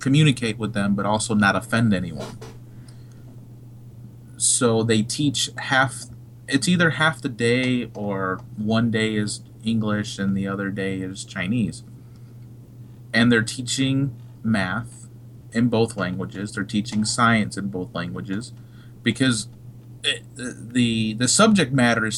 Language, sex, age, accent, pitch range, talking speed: English, male, 30-49, American, 110-120 Hz, 130 wpm